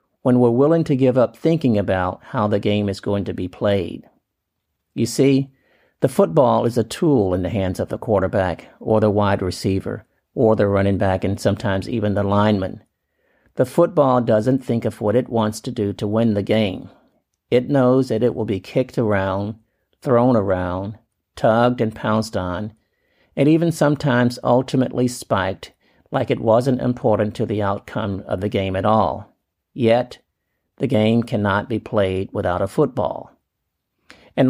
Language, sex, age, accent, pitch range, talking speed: English, male, 50-69, American, 100-125 Hz, 170 wpm